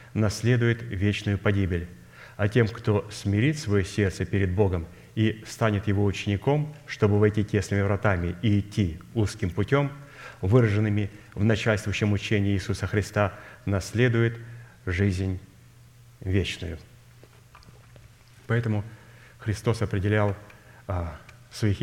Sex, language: male, Russian